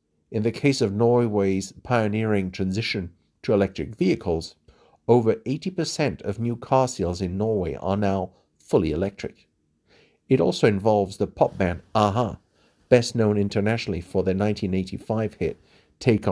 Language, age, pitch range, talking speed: English, 50-69, 90-120 Hz, 135 wpm